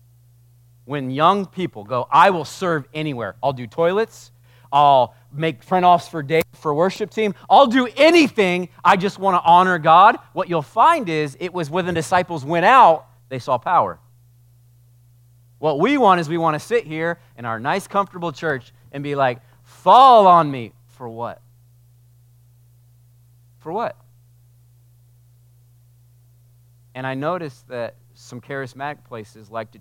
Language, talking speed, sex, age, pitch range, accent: English, 155 wpm, male, 40-59, 120-145 Hz, American